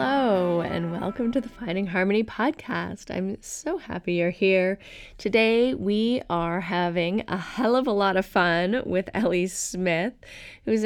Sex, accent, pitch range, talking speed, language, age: female, American, 175-215 Hz, 155 wpm, English, 20-39